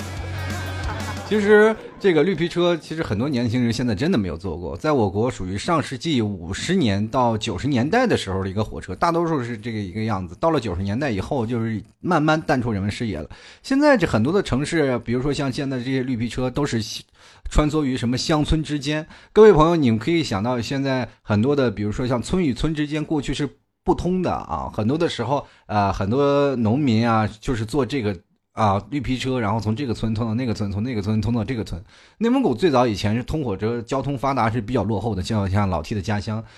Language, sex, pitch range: Chinese, male, 105-140 Hz